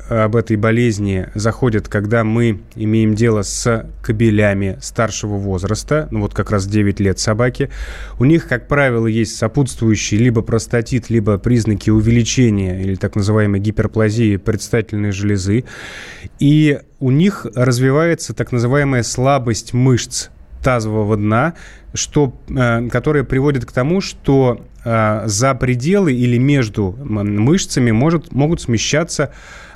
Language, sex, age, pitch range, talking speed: Russian, male, 20-39, 110-130 Hz, 120 wpm